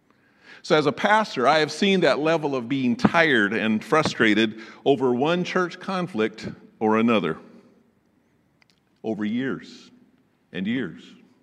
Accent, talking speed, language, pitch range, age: American, 125 wpm, English, 125-205 Hz, 50-69